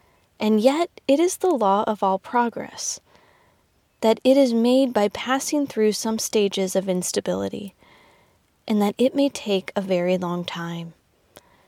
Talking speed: 150 wpm